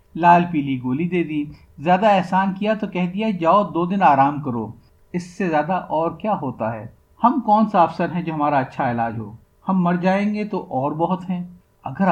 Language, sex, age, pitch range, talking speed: Urdu, male, 50-69, 140-190 Hz, 210 wpm